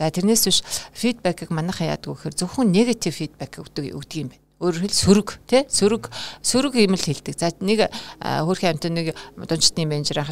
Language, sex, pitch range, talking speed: Russian, female, 155-205 Hz, 135 wpm